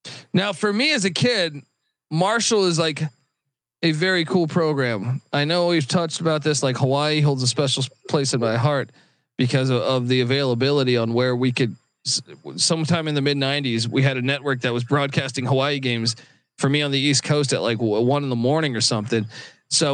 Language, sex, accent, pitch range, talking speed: English, male, American, 135-175 Hz, 200 wpm